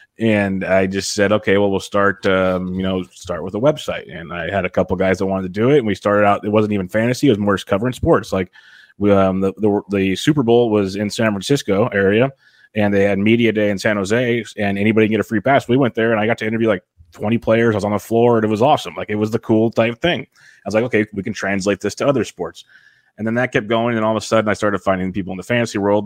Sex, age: male, 20-39